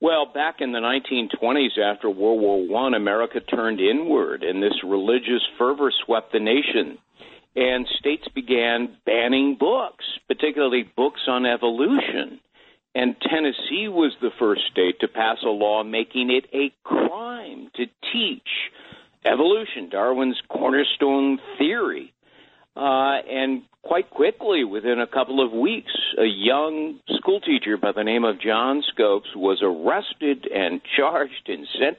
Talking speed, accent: 135 wpm, American